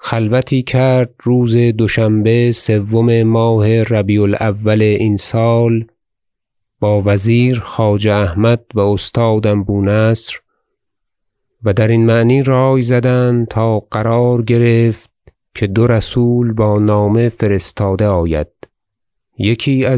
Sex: male